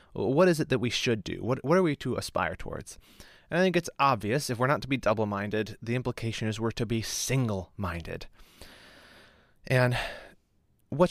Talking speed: 185 wpm